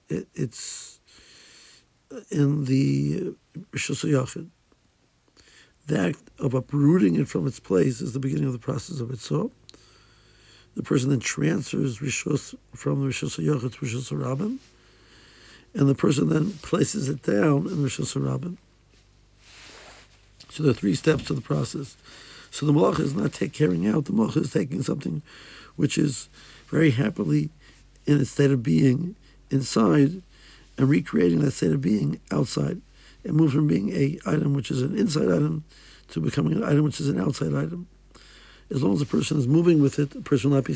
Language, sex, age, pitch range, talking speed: English, male, 60-79, 130-150 Hz, 170 wpm